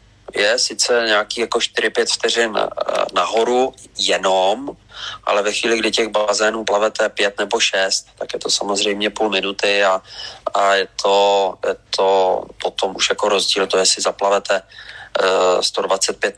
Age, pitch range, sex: 30-49, 105-140 Hz, male